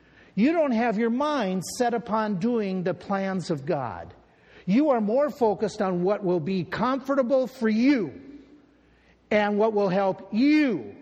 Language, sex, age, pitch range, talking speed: English, male, 50-69, 145-230 Hz, 150 wpm